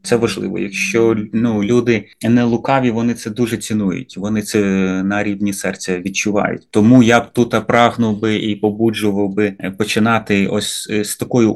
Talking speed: 155 wpm